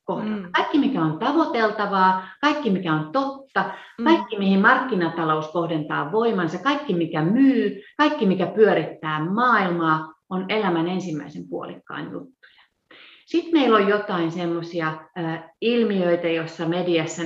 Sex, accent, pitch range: female, native, 165-210 Hz